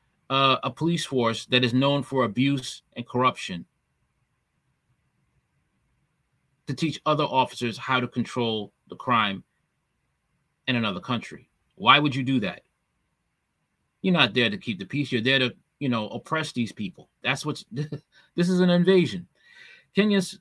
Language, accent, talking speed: English, American, 145 wpm